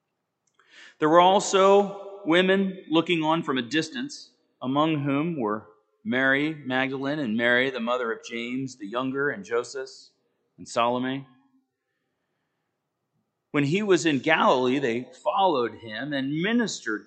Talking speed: 125 wpm